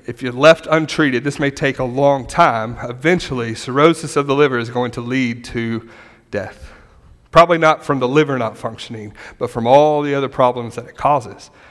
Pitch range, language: 130-165 Hz, English